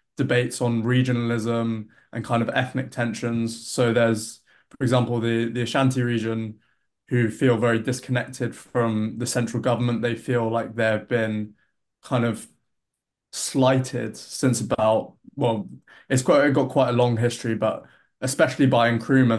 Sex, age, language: male, 20-39, English